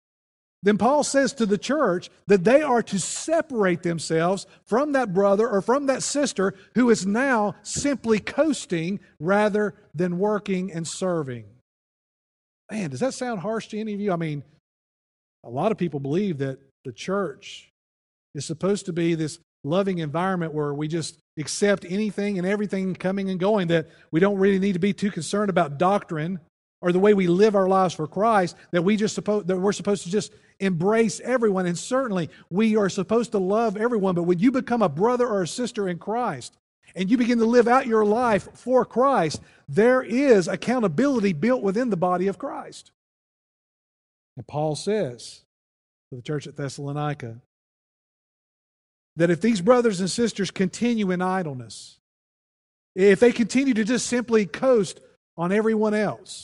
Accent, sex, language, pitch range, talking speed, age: American, male, English, 170-220 Hz, 170 wpm, 50-69